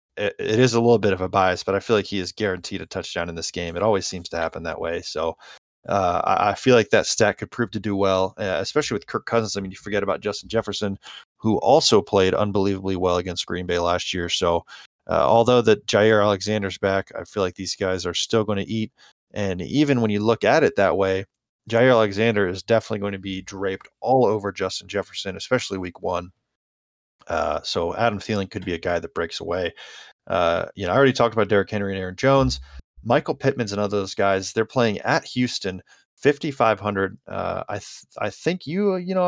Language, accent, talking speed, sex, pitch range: English, American, 220 wpm, male, 95-115 Hz